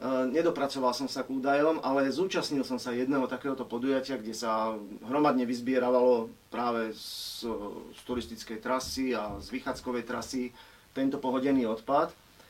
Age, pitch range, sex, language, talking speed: 40-59, 120-145 Hz, male, Slovak, 135 wpm